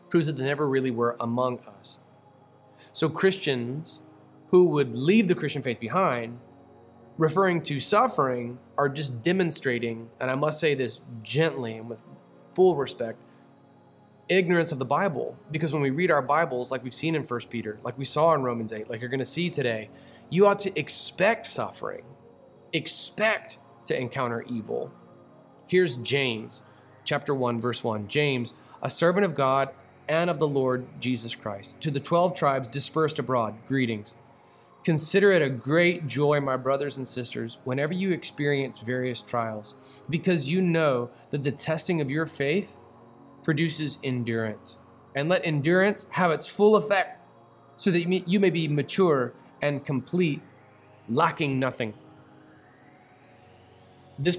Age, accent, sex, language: 20-39, American, male, English